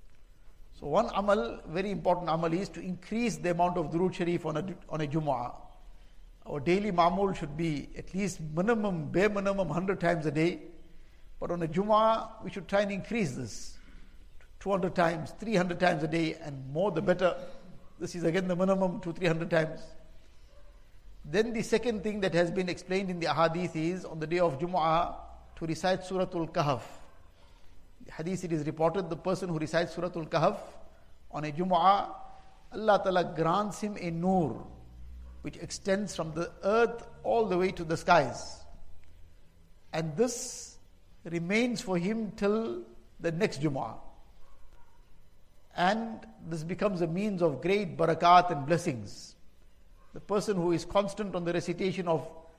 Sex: male